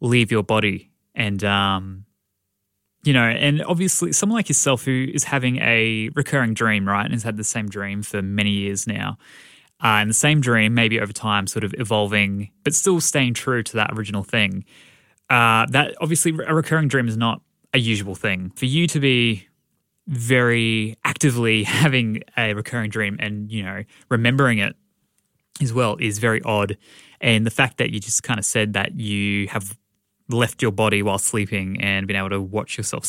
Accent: Australian